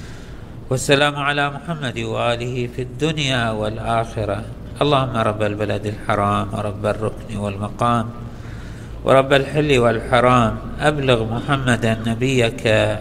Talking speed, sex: 90 wpm, male